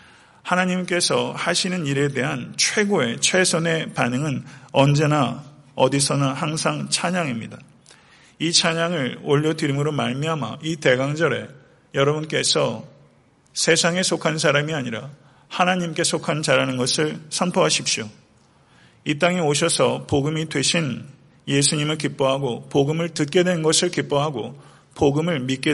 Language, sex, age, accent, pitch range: Korean, male, 40-59, native, 140-165 Hz